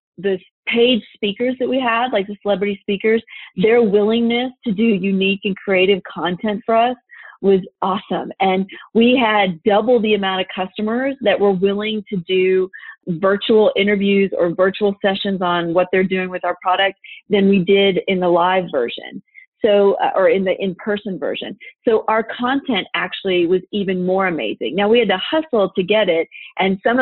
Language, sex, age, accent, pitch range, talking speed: English, female, 40-59, American, 190-235 Hz, 175 wpm